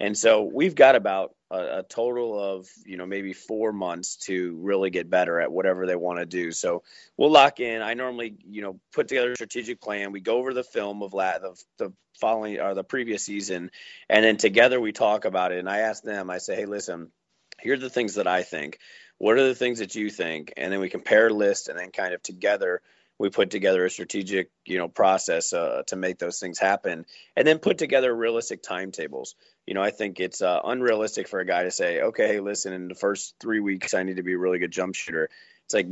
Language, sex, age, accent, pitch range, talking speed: English, male, 30-49, American, 95-110 Hz, 230 wpm